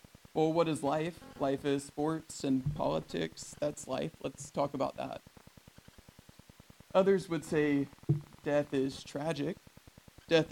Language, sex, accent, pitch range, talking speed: English, male, American, 135-155 Hz, 125 wpm